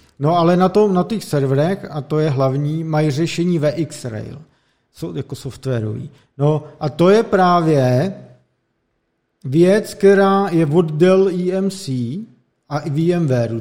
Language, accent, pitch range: Czech, native, 145-175 Hz